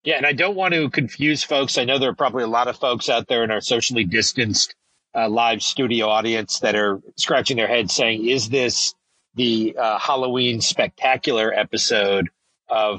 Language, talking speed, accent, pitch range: English, 190 wpm, American, 100-120 Hz